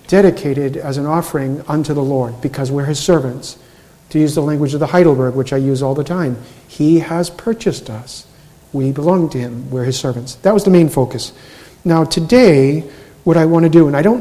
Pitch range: 135-165 Hz